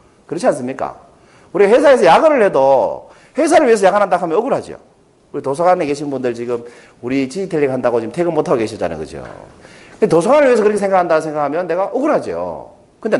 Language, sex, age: Korean, male, 40-59